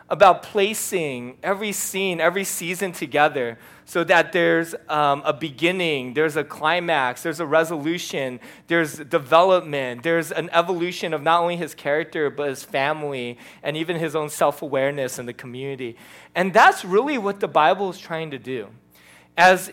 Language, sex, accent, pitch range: English, male, American, 140-185 Hz